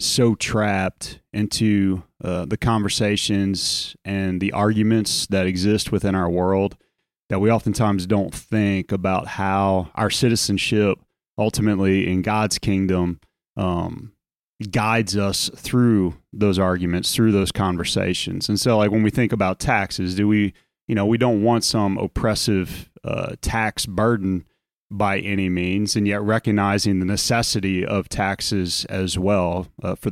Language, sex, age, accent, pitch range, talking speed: English, male, 30-49, American, 95-110 Hz, 140 wpm